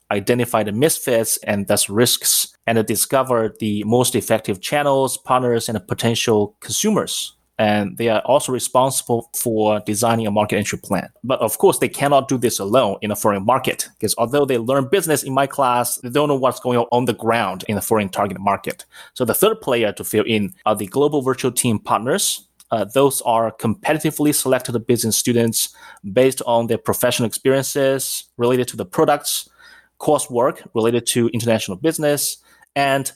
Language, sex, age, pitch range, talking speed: English, male, 30-49, 115-135 Hz, 175 wpm